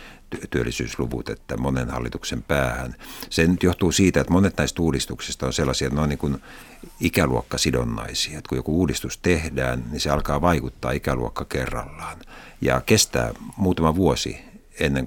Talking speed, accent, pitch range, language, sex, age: 140 wpm, native, 65-80 Hz, Finnish, male, 60-79